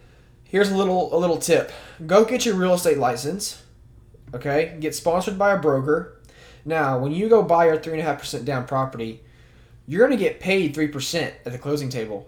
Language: English